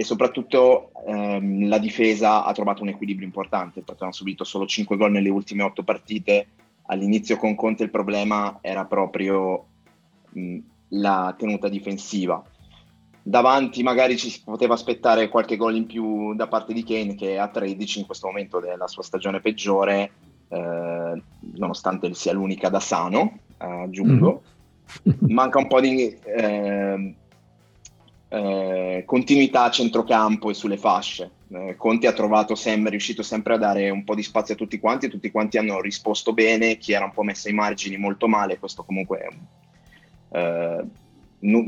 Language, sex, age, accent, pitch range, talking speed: Italian, male, 20-39, native, 100-110 Hz, 160 wpm